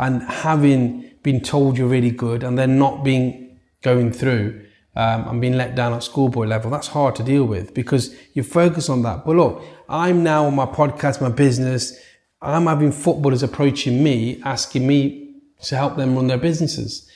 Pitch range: 125-155 Hz